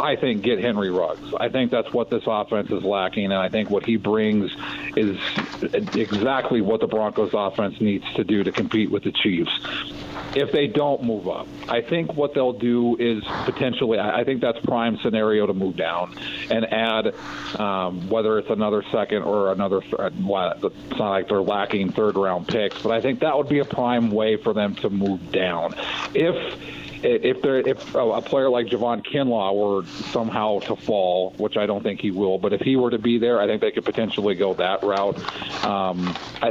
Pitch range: 105-125 Hz